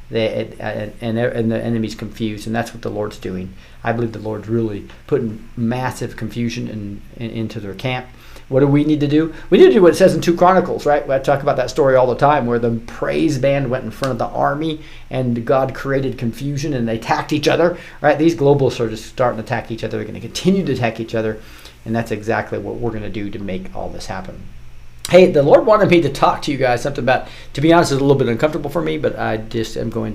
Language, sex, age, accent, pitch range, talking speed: English, male, 40-59, American, 110-135 Hz, 245 wpm